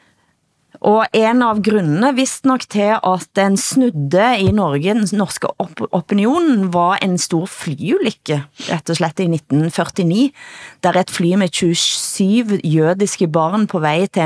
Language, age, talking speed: Danish, 30-49, 135 wpm